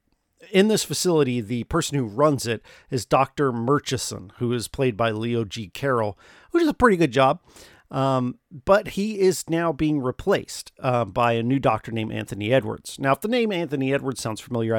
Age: 40-59